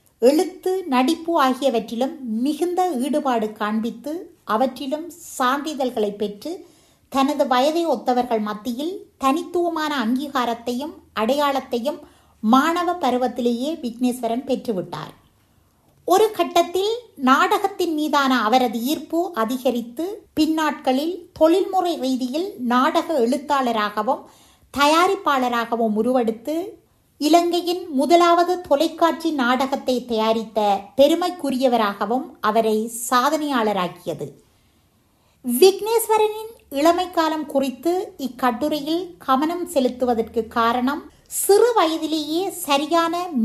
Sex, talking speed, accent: female, 75 wpm, native